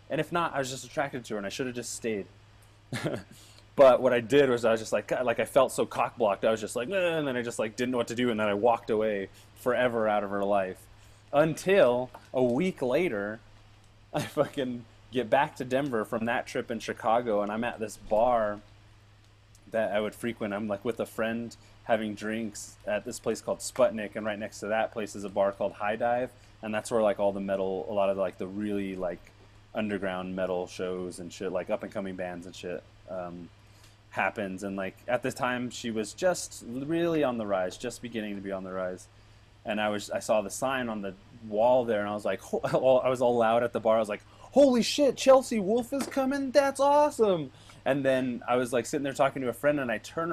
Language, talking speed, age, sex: English, 235 wpm, 20-39, male